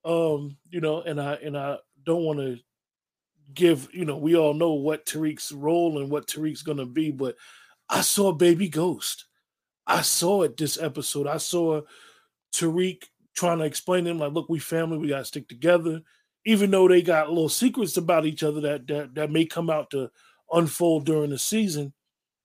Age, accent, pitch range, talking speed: 20-39, American, 145-175 Hz, 195 wpm